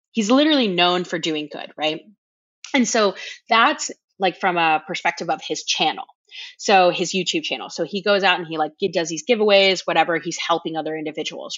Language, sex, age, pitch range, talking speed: English, female, 30-49, 170-225 Hz, 185 wpm